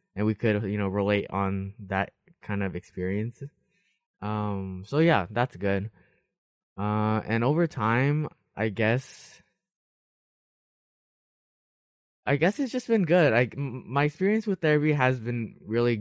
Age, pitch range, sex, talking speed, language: 20-39, 100-135 Hz, male, 140 wpm, English